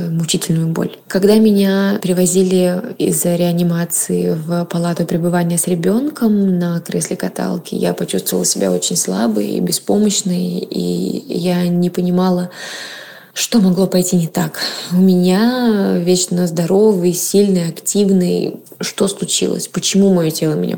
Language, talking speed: Russian, 125 wpm